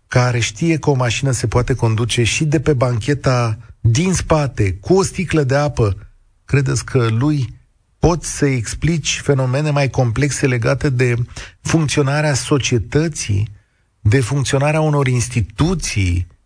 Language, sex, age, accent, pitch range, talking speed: Romanian, male, 40-59, native, 105-140 Hz, 130 wpm